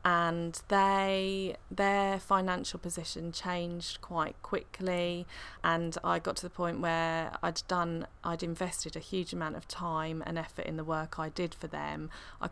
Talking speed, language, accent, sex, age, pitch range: 155 wpm, English, British, female, 20-39, 155-180 Hz